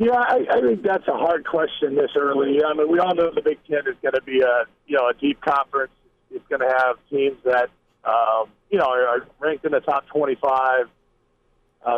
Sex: male